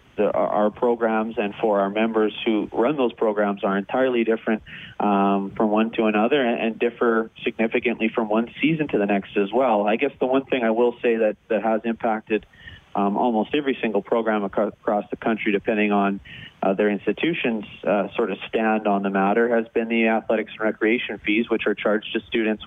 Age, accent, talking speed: 30-49, American, 195 wpm